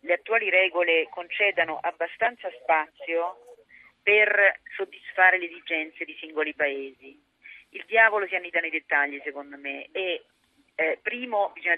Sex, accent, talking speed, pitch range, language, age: female, native, 125 wpm, 165-215 Hz, Italian, 40-59